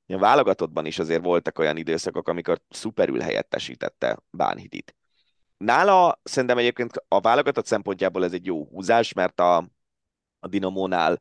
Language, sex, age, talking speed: Hungarian, male, 30-49, 135 wpm